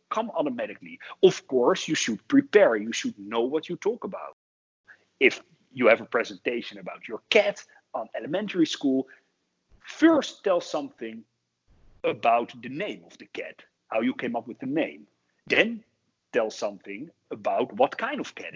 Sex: male